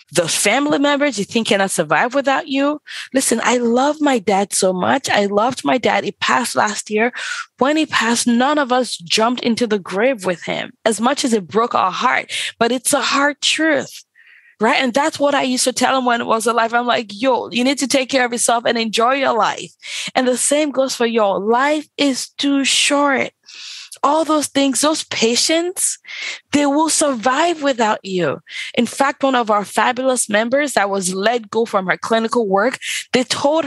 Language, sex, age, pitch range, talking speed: English, female, 20-39, 225-280 Hz, 200 wpm